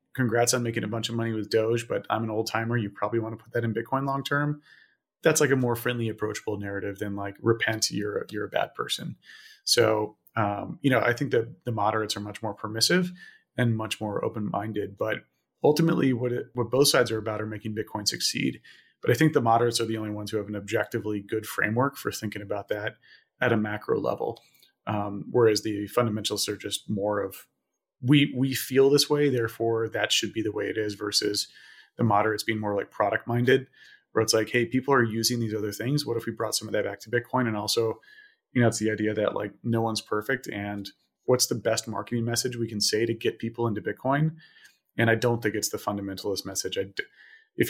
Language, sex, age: English, male, 30-49